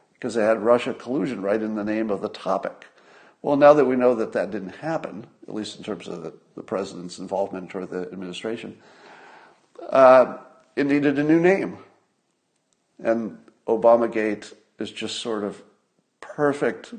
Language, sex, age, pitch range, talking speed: English, male, 50-69, 105-145 Hz, 165 wpm